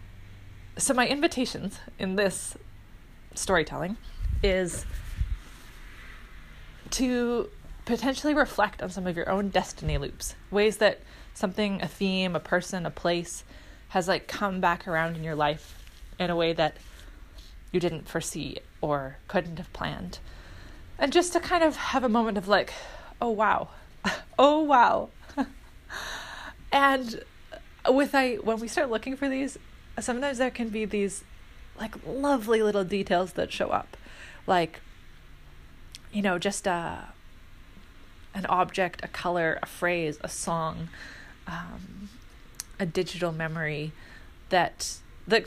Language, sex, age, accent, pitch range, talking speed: English, female, 20-39, American, 150-220 Hz, 130 wpm